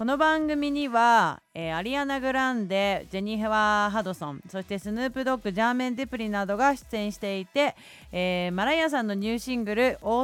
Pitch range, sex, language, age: 180-255 Hz, female, Japanese, 30-49